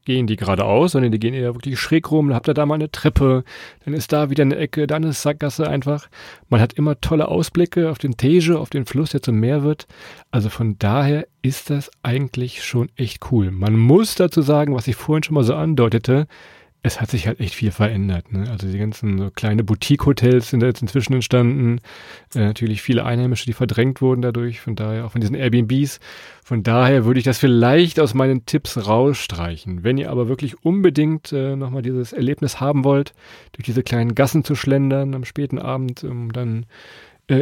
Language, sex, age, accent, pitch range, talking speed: German, male, 40-59, German, 115-145 Hz, 205 wpm